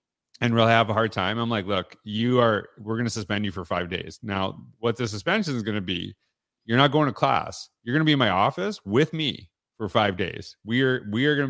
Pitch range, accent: 110-145 Hz, American